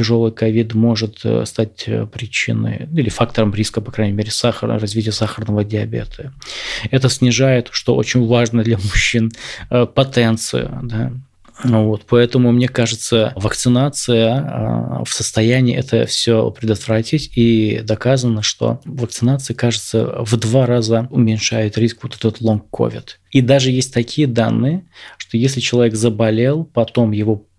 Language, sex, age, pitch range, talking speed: Russian, male, 20-39, 115-130 Hz, 130 wpm